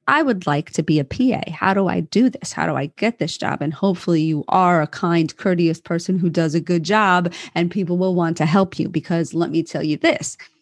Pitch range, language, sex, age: 160-200 Hz, English, female, 30-49